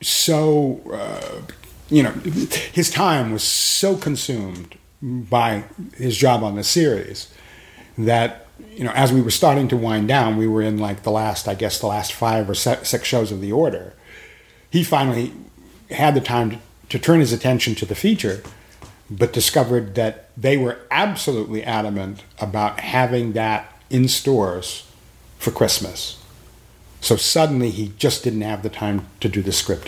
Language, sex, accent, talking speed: English, male, American, 160 wpm